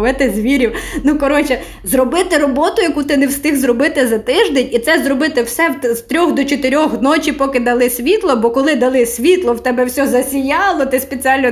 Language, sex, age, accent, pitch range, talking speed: Ukrainian, female, 20-39, native, 210-275 Hz, 175 wpm